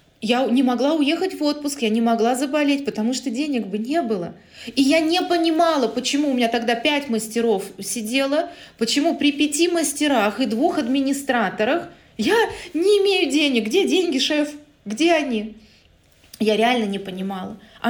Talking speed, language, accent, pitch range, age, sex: 160 wpm, Russian, native, 220-295 Hz, 20-39, female